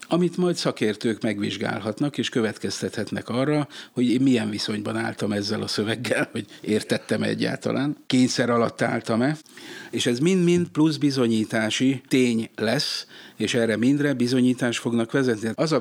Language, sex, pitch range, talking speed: Hungarian, male, 110-130 Hz, 135 wpm